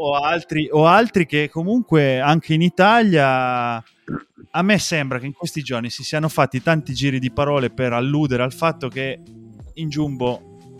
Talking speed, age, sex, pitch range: 160 wpm, 20-39, male, 120-145 Hz